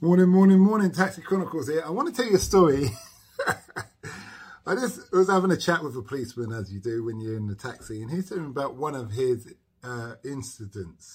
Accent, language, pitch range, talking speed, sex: British, English, 105-135 Hz, 210 wpm, male